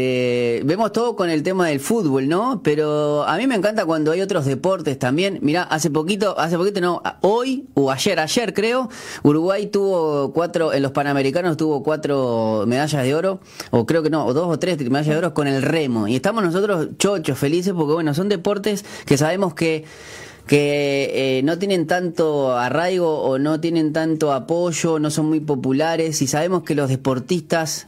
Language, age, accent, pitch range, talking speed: Spanish, 20-39, Argentinian, 130-170 Hz, 185 wpm